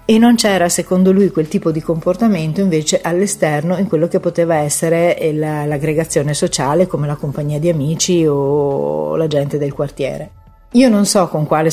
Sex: female